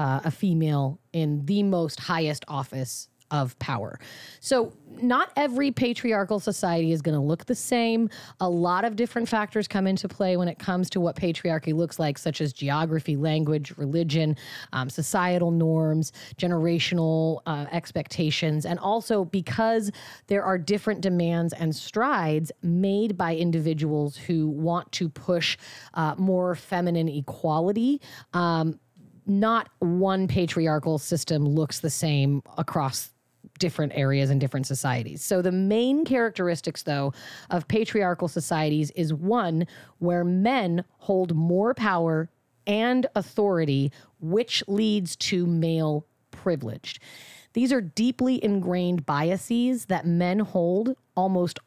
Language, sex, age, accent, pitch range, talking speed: English, female, 30-49, American, 155-200 Hz, 130 wpm